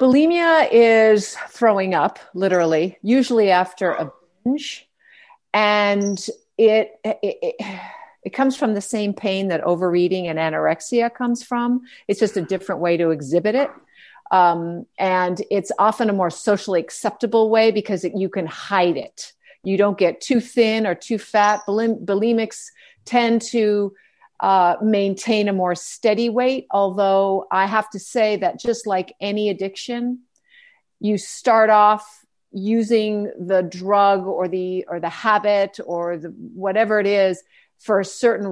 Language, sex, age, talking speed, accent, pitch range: English, female, 50-69, 140 wpm, American, 185-230 Hz